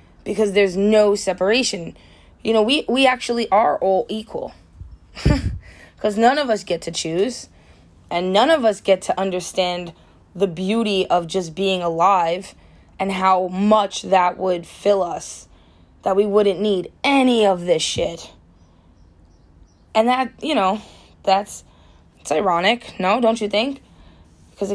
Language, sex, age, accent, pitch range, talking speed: English, female, 20-39, American, 170-220 Hz, 145 wpm